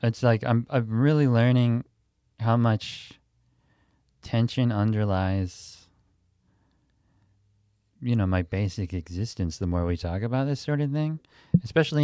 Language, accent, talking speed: English, American, 125 wpm